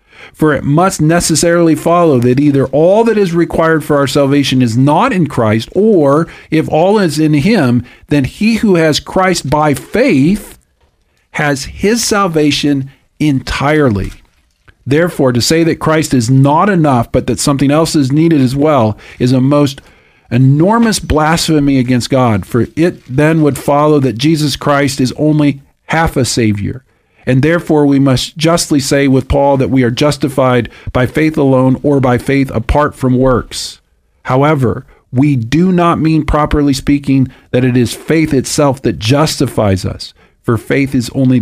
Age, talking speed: 50-69, 160 wpm